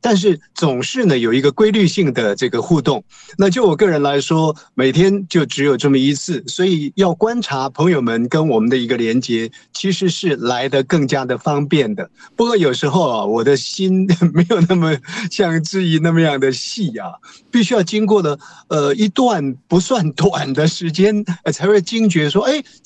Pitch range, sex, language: 140-195 Hz, male, Chinese